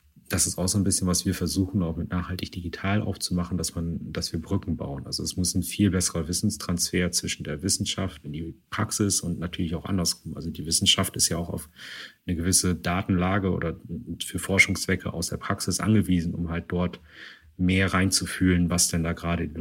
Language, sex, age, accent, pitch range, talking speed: German, male, 30-49, German, 85-95 Hz, 195 wpm